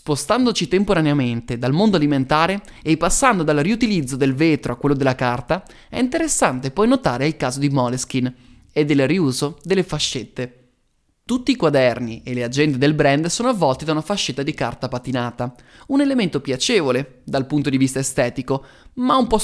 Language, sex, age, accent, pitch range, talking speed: Italian, male, 20-39, native, 130-185 Hz, 170 wpm